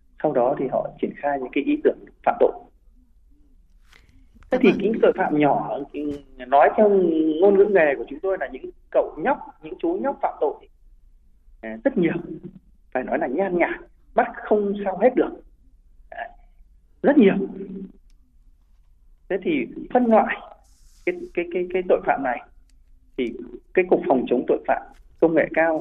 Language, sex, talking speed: Vietnamese, male, 165 wpm